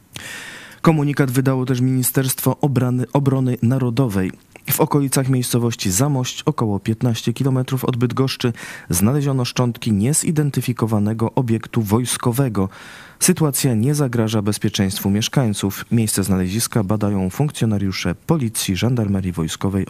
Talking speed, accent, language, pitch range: 95 wpm, native, Polish, 105-135 Hz